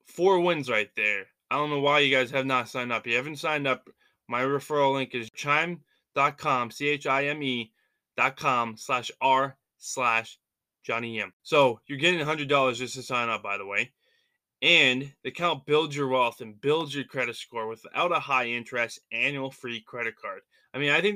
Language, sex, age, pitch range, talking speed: English, male, 20-39, 125-160 Hz, 185 wpm